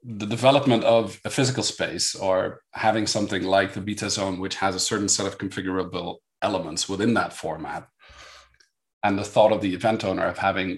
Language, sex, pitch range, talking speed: English, male, 95-115 Hz, 185 wpm